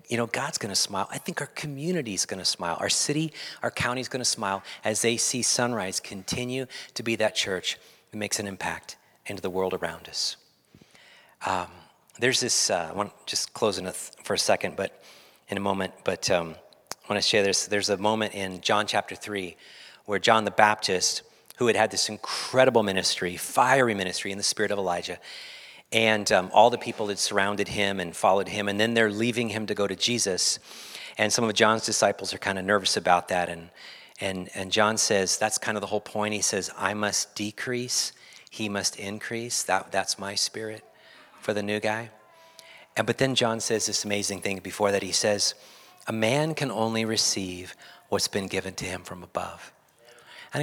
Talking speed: 200 wpm